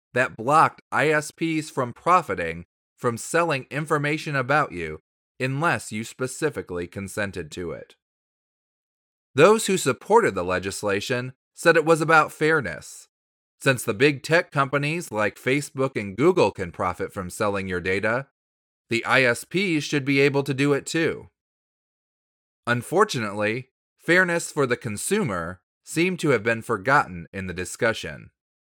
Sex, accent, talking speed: male, American, 130 wpm